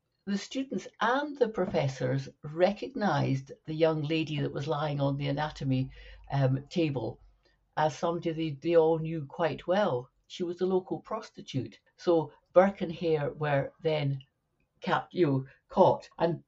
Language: English